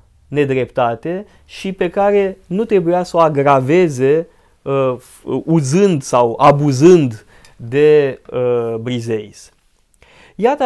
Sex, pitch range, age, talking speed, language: male, 140-200 Hz, 20-39, 85 wpm, Romanian